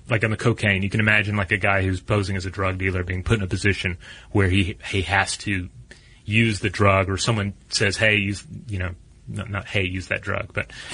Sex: male